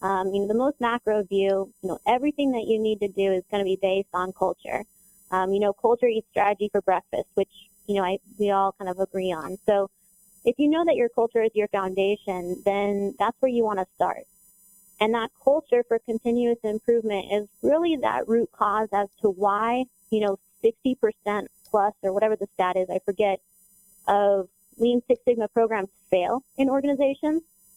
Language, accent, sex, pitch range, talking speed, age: English, American, female, 195-235 Hz, 195 wpm, 20-39